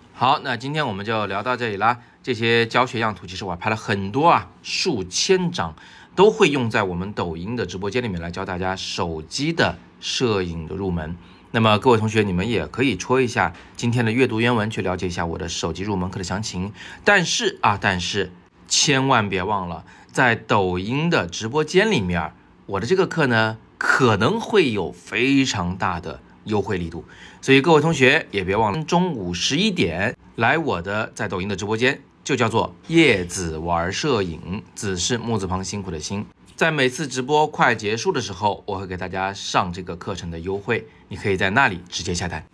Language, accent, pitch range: Chinese, native, 90-125 Hz